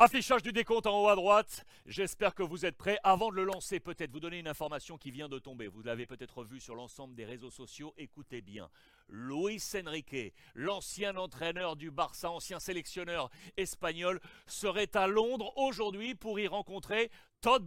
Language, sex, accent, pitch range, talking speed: French, male, French, 170-215 Hz, 180 wpm